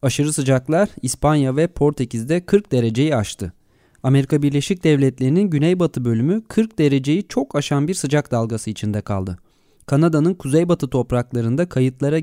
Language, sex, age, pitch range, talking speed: Turkish, male, 30-49, 125-175 Hz, 130 wpm